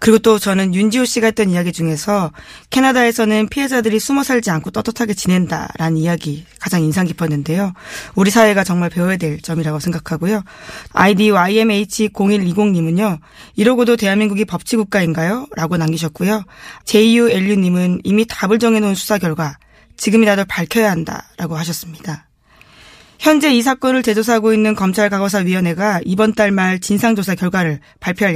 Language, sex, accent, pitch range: Korean, female, native, 175-220 Hz